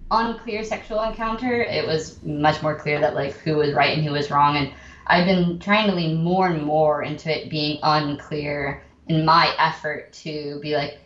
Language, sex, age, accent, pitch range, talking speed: English, female, 20-39, American, 155-185 Hz, 195 wpm